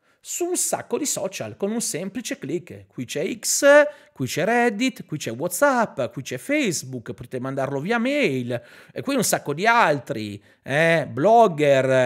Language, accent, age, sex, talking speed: Italian, native, 40-59, male, 165 wpm